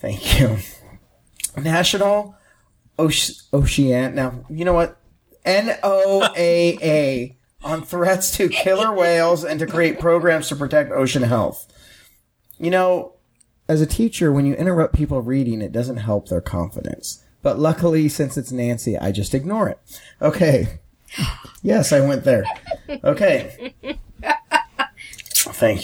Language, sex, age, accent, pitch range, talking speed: English, male, 30-49, American, 135-180 Hz, 125 wpm